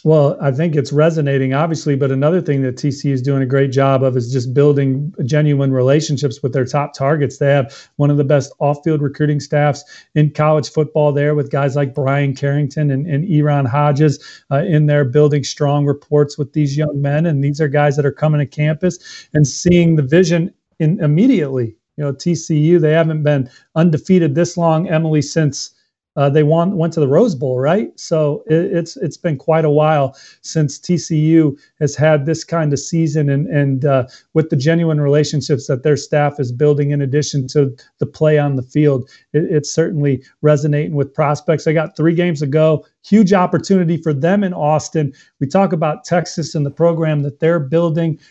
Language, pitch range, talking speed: English, 145-165 Hz, 190 wpm